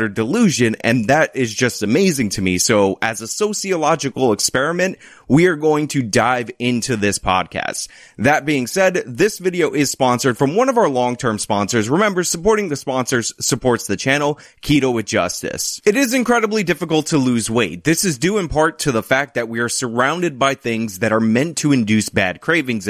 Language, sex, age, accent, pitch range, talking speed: English, male, 30-49, American, 115-175 Hz, 190 wpm